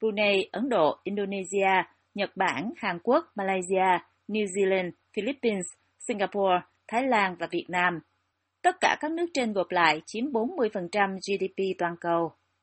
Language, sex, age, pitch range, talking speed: Vietnamese, female, 20-39, 185-235 Hz, 145 wpm